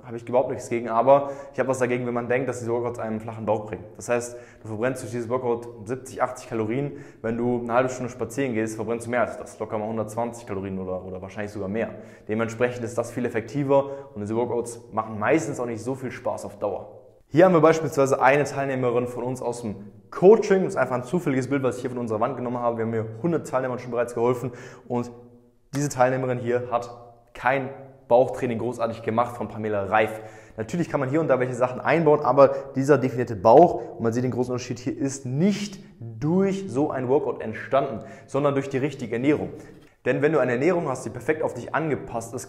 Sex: male